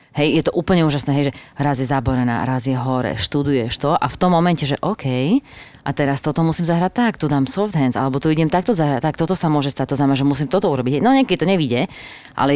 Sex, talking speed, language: female, 250 wpm, Slovak